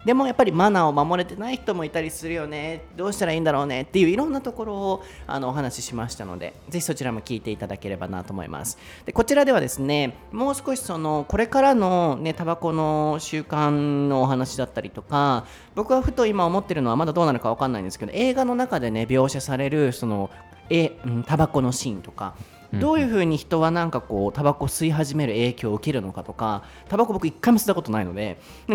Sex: male